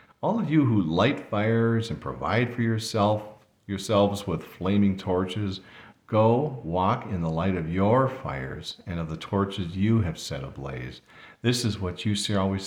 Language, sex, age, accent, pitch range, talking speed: English, male, 50-69, American, 85-115 Hz, 170 wpm